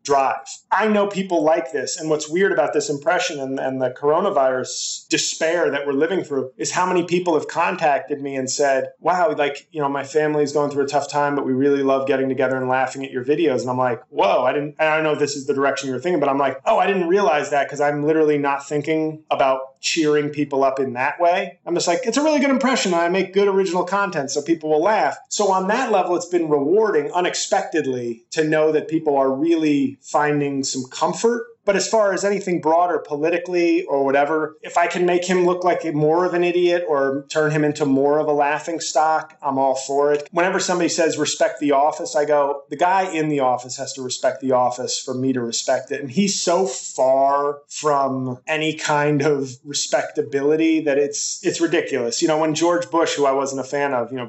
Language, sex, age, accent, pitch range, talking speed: English, male, 30-49, American, 140-175 Hz, 225 wpm